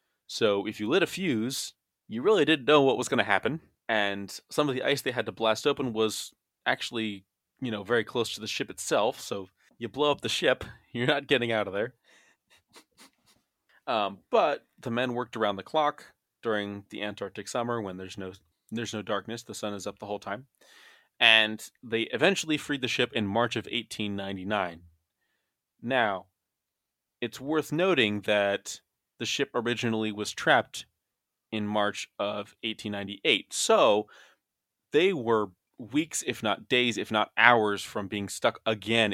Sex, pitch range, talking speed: male, 105-125 Hz, 165 wpm